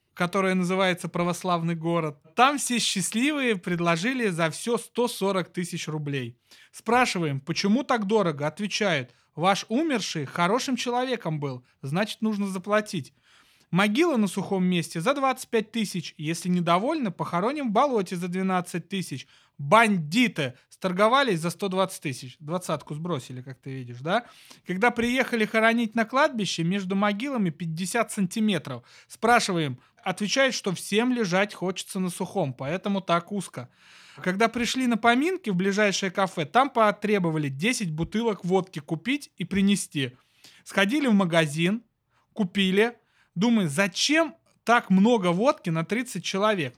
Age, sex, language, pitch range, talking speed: 30-49, male, Russian, 170-225 Hz, 125 wpm